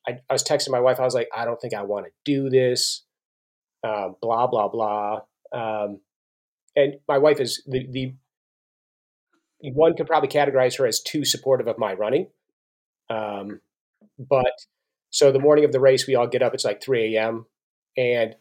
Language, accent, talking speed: English, American, 185 wpm